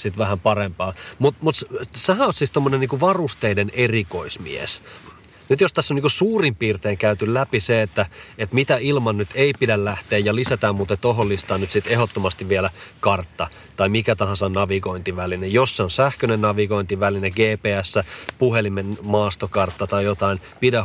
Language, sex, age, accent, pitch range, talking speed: Finnish, male, 30-49, native, 95-115 Hz, 160 wpm